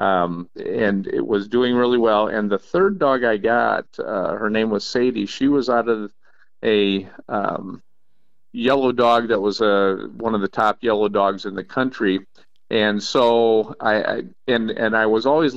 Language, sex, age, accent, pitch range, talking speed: English, male, 50-69, American, 100-120 Hz, 180 wpm